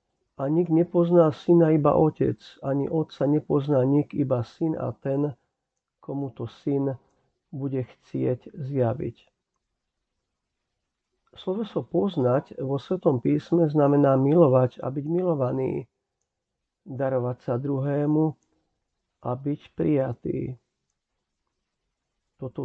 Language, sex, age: Slovak, male, 50-69